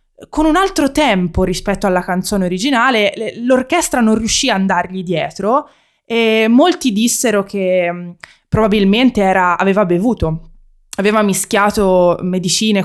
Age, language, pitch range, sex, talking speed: 20-39, Italian, 175-235 Hz, female, 120 wpm